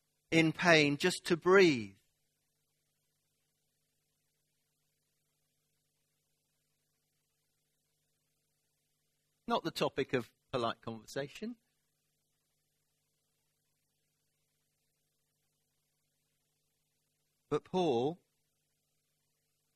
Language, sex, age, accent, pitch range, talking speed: English, male, 50-69, British, 115-145 Hz, 40 wpm